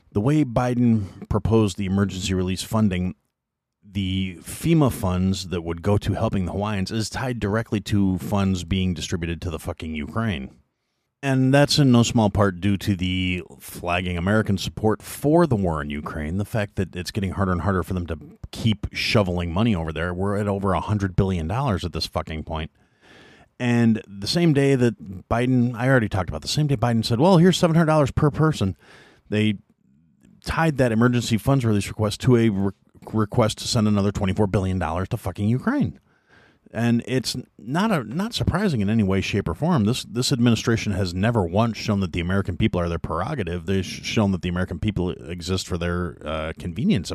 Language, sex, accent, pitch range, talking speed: English, male, American, 90-115 Hz, 190 wpm